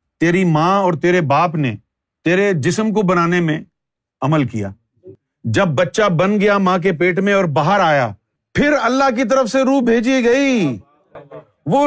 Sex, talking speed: male, 165 wpm